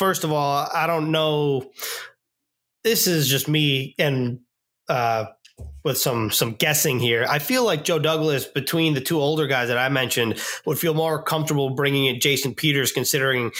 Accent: American